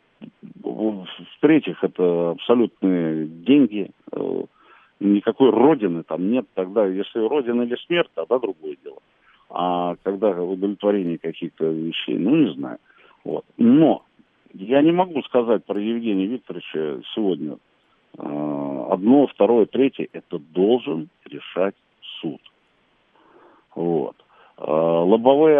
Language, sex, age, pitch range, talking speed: Russian, male, 50-69, 85-115 Hz, 100 wpm